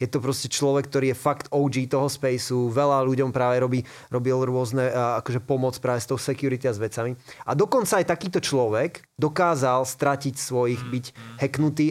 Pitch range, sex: 120-140 Hz, male